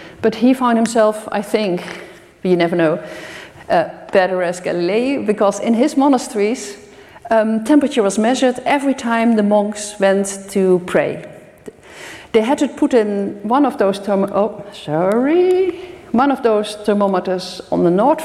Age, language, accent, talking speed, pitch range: 50-69, French, Dutch, 140 wpm, 205-265 Hz